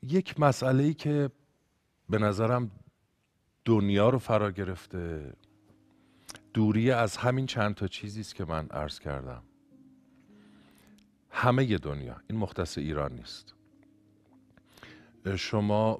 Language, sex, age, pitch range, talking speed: Persian, male, 50-69, 85-115 Hz, 105 wpm